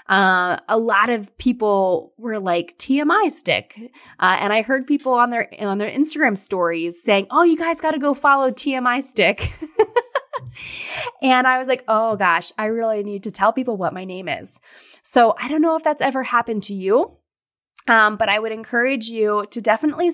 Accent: American